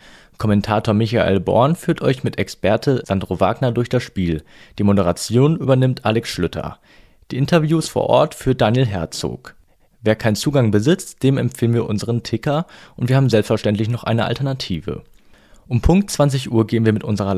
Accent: German